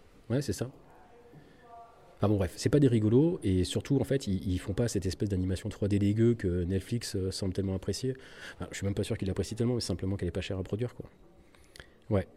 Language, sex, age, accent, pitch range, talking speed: French, male, 30-49, French, 95-120 Hz, 225 wpm